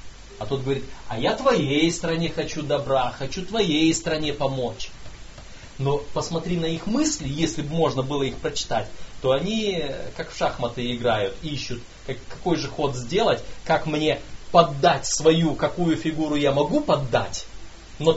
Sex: male